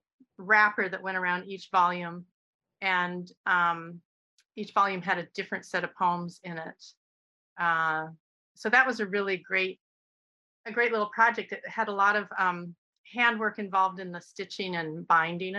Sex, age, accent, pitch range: female, 30-49, American, 180-215 Hz